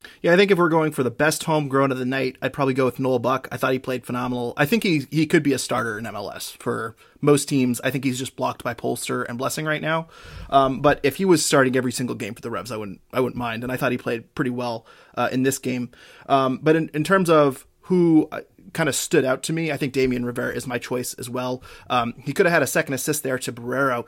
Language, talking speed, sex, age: English, 275 wpm, male, 20-39